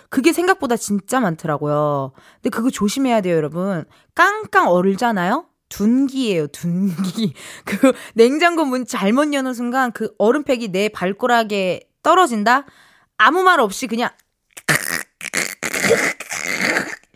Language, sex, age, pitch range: Korean, female, 20-39, 175-270 Hz